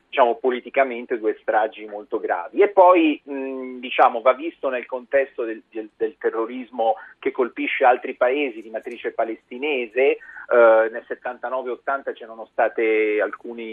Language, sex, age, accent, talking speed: Italian, male, 40-59, native, 135 wpm